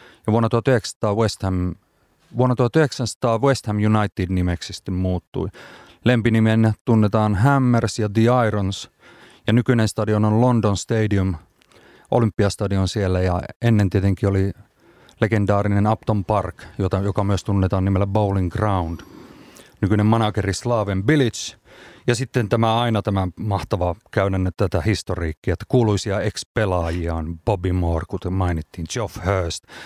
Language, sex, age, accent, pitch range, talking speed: Finnish, male, 30-49, native, 95-115 Hz, 130 wpm